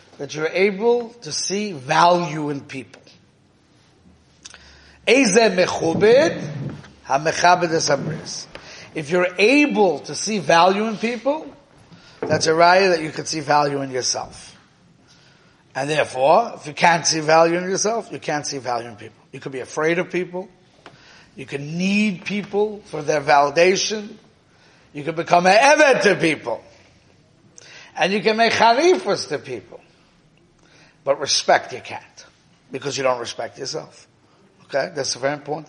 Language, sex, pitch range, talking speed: English, male, 140-180 Hz, 140 wpm